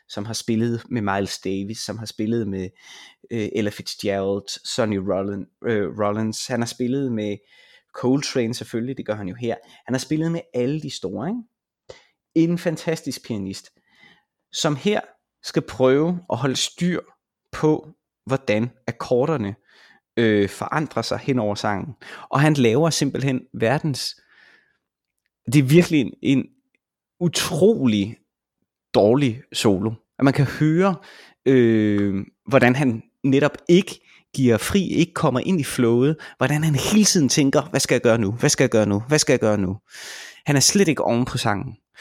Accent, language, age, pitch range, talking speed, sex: native, Danish, 20-39, 110-155 Hz, 150 wpm, male